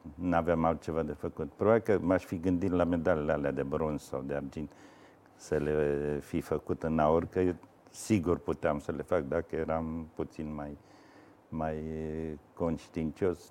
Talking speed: 165 wpm